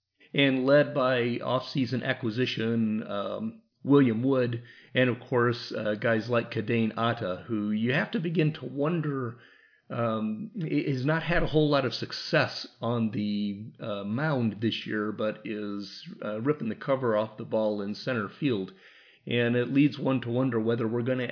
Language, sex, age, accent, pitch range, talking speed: English, male, 40-59, American, 105-130 Hz, 170 wpm